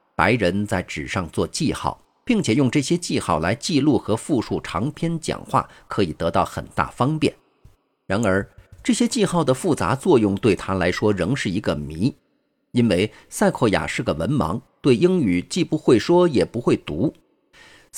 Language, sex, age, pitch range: Chinese, male, 50-69, 100-165 Hz